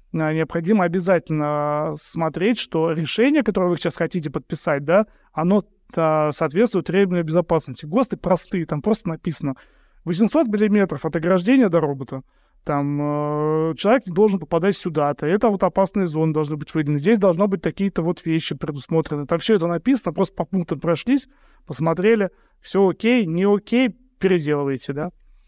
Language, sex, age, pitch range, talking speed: Russian, male, 20-39, 160-205 Hz, 150 wpm